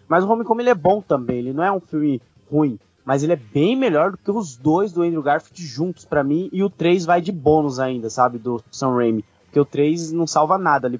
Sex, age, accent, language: male, 20-39, Brazilian, Portuguese